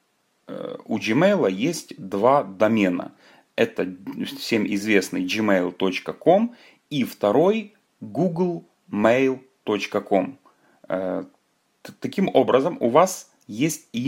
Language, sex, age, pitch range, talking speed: Ukrainian, male, 30-49, 100-155 Hz, 70 wpm